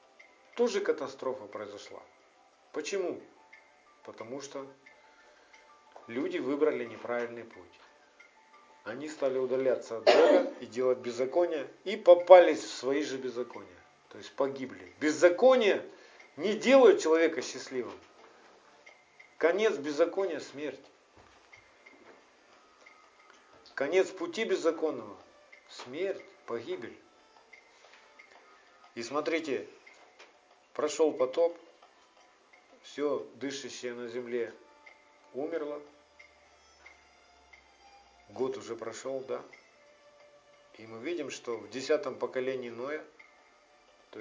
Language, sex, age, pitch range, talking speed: Russian, male, 50-69, 125-175 Hz, 85 wpm